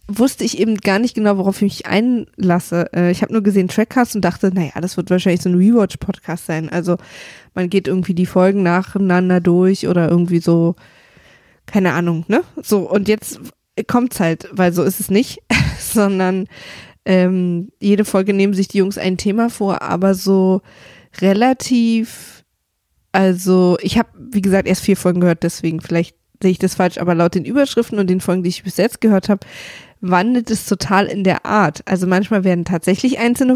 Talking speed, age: 180 wpm, 20-39